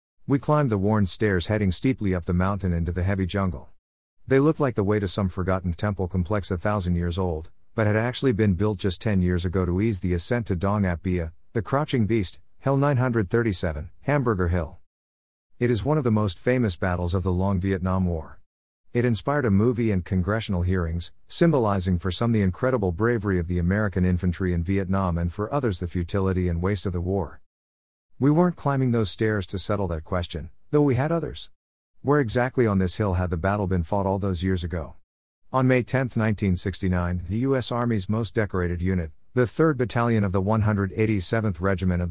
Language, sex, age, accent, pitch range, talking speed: English, male, 50-69, American, 90-115 Hz, 200 wpm